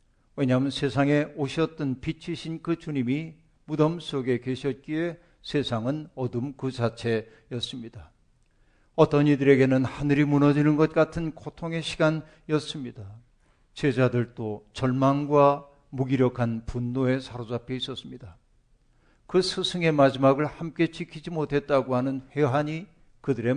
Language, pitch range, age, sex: Korean, 125-155 Hz, 50-69, male